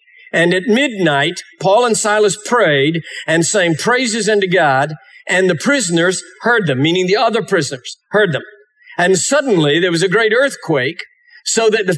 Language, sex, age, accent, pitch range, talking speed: English, male, 50-69, American, 165-240 Hz, 165 wpm